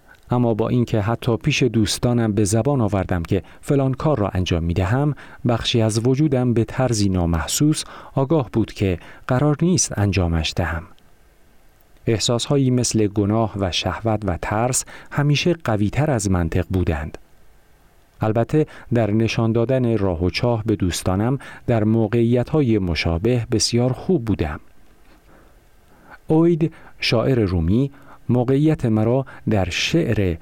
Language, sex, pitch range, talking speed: Persian, male, 100-130 Hz, 125 wpm